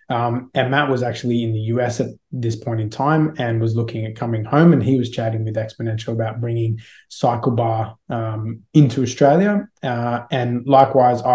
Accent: Australian